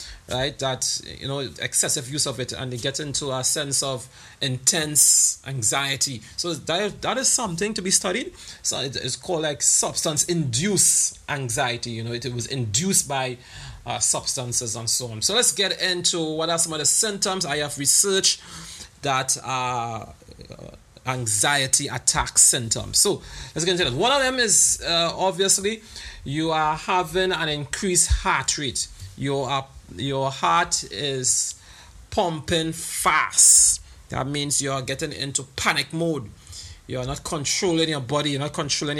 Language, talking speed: English, 160 wpm